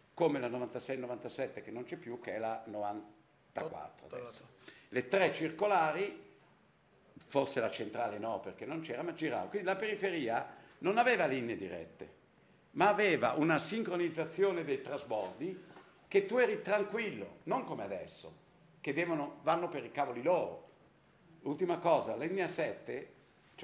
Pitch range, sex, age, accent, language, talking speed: 120-180 Hz, male, 50-69, native, Italian, 145 wpm